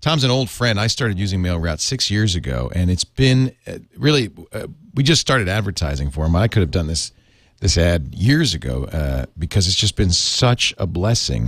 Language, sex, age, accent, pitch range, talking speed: English, male, 40-59, American, 95-125 Hz, 210 wpm